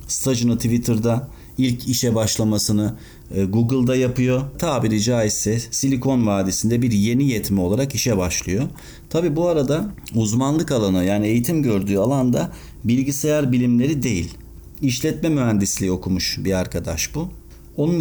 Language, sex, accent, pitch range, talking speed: Turkish, male, native, 105-140 Hz, 120 wpm